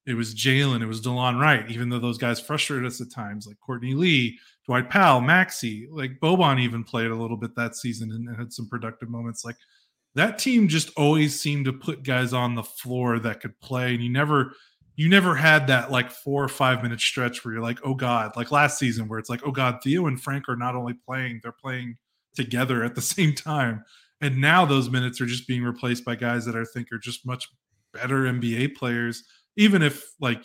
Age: 20-39